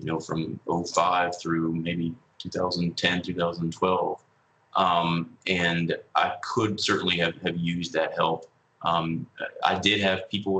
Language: German